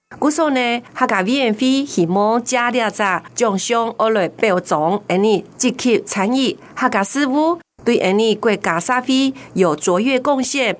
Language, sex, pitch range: Chinese, female, 195-255 Hz